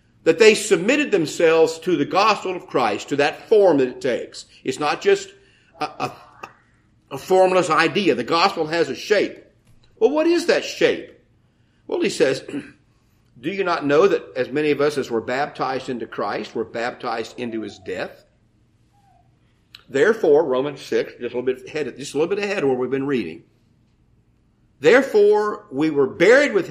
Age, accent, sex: 50-69, American, male